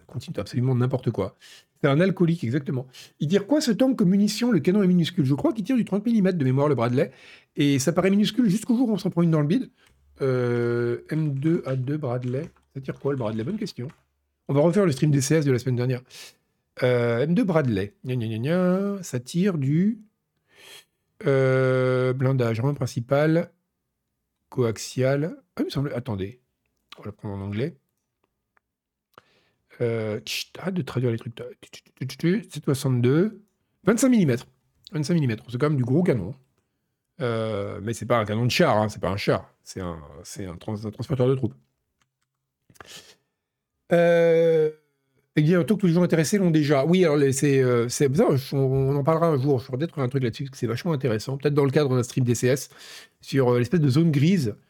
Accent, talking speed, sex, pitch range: French, 185 wpm, male, 120-165 Hz